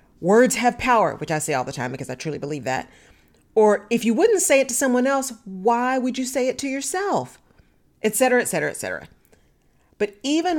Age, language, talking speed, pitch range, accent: 40-59, English, 215 wpm, 165-245 Hz, American